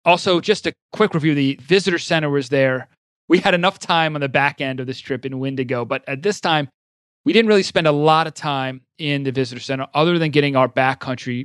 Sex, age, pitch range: male, 30-49, 125-155 Hz